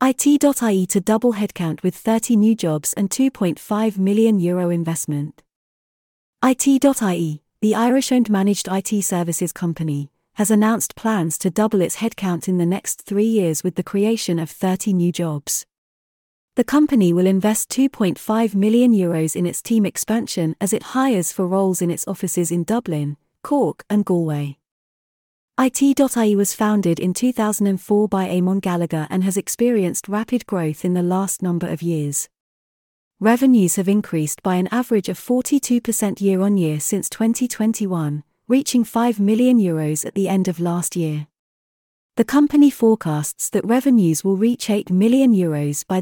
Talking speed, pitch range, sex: 145 wpm, 175-225 Hz, female